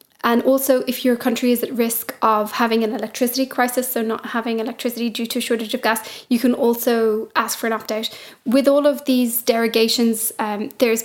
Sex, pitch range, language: female, 220-245 Hz, English